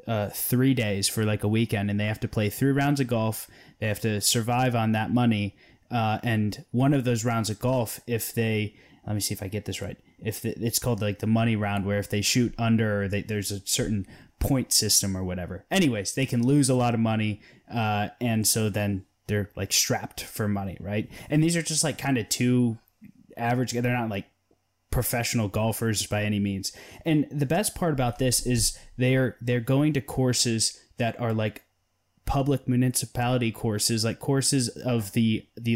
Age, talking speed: 20-39, 205 wpm